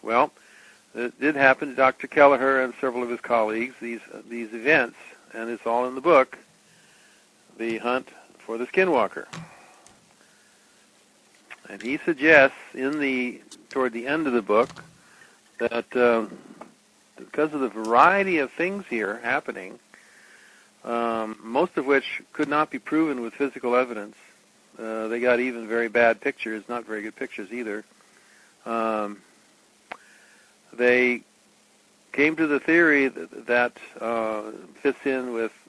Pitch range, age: 115-135 Hz, 60-79